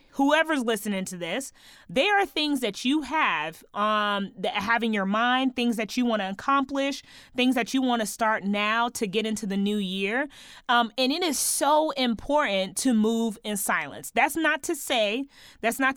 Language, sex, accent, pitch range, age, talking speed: English, female, American, 215-290 Hz, 30-49, 190 wpm